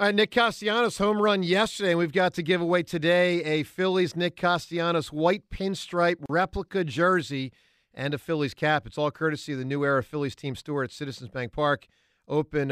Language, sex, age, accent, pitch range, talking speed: English, male, 50-69, American, 135-185 Hz, 195 wpm